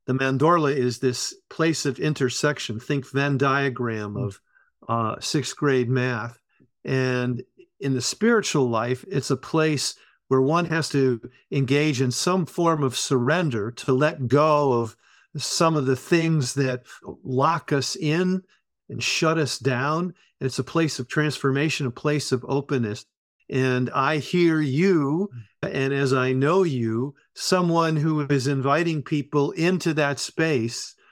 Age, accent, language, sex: 50-69, American, English, male